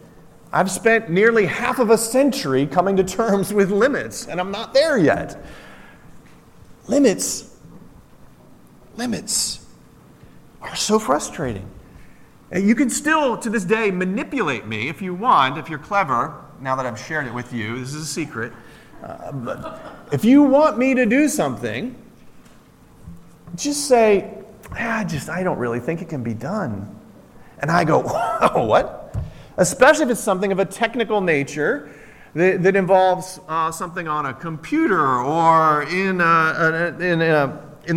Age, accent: 40-59, American